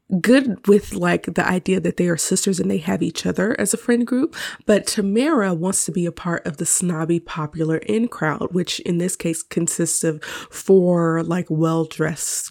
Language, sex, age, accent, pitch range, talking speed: English, female, 20-39, American, 175-245 Hz, 190 wpm